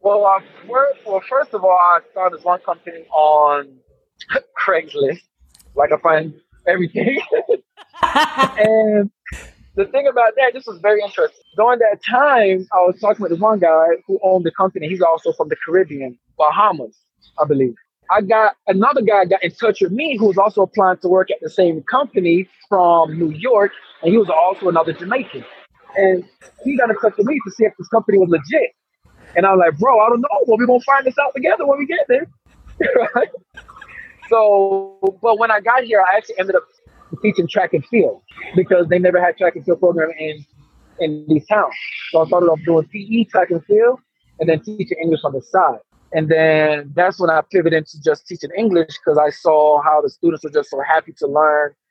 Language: English